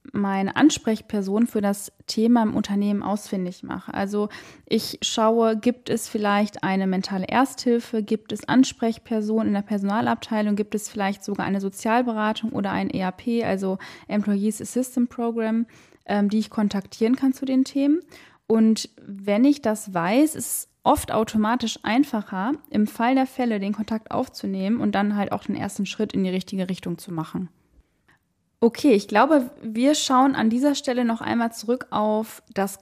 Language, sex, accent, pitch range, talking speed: German, female, German, 200-240 Hz, 160 wpm